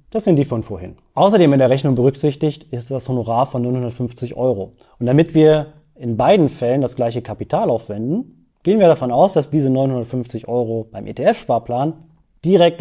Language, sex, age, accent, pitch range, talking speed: German, male, 20-39, German, 125-165 Hz, 175 wpm